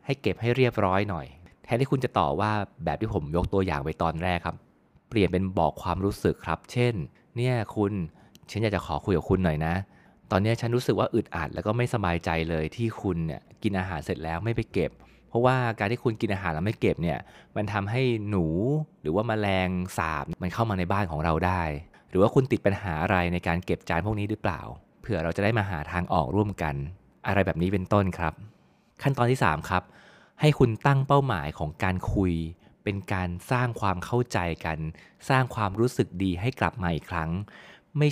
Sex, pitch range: male, 85-110 Hz